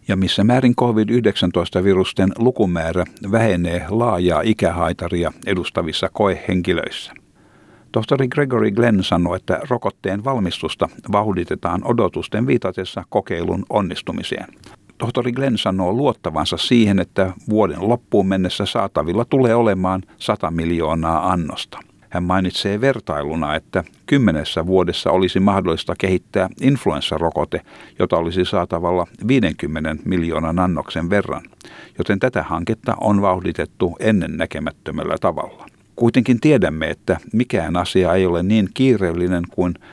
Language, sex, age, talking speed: Finnish, male, 60-79, 105 wpm